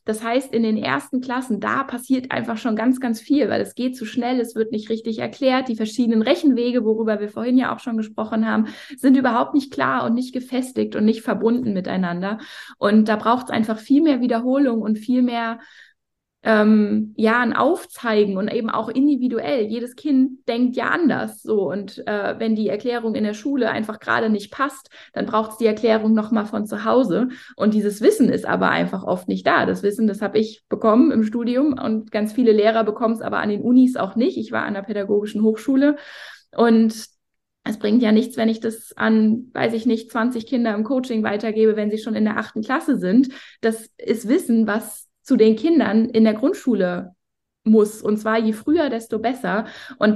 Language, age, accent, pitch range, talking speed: German, 20-39, German, 215-250 Hz, 200 wpm